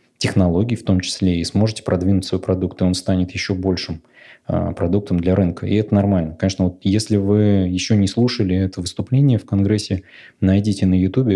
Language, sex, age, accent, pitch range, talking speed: Russian, male, 20-39, native, 90-100 Hz, 180 wpm